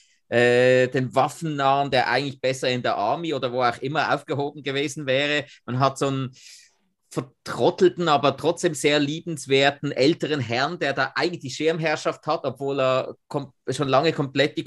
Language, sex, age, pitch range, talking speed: German, male, 30-49, 135-170 Hz, 165 wpm